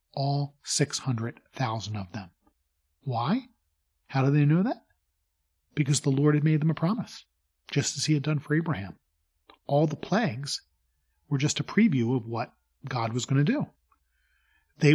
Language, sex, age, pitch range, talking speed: English, male, 40-59, 110-150 Hz, 160 wpm